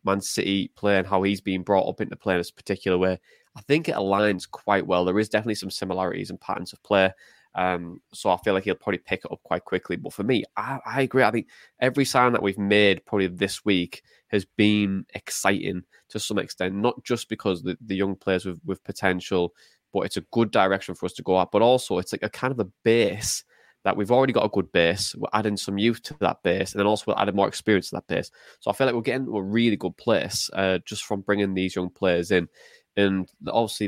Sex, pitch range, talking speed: male, 95-110 Hz, 250 wpm